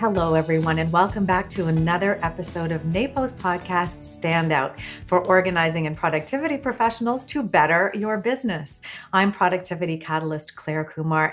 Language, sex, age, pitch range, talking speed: English, female, 40-59, 165-220 Hz, 140 wpm